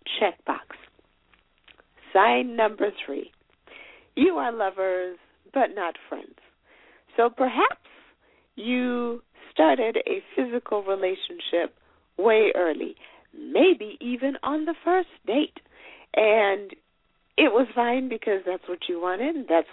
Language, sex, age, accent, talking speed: English, female, 50-69, American, 110 wpm